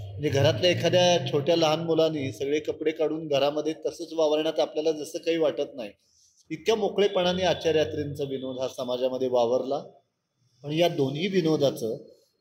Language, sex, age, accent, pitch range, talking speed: Marathi, male, 30-49, native, 140-165 Hz, 135 wpm